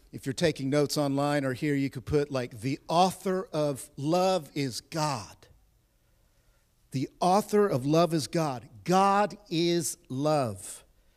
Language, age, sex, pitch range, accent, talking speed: English, 50-69, male, 120-185 Hz, American, 140 wpm